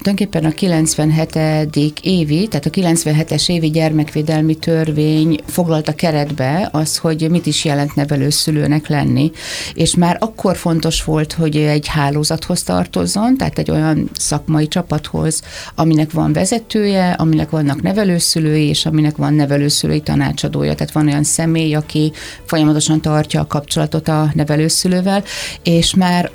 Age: 30-49